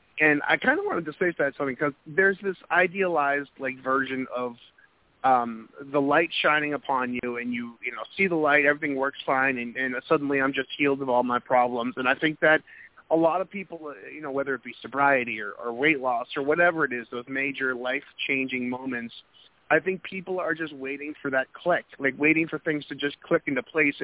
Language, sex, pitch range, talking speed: English, male, 130-155 Hz, 210 wpm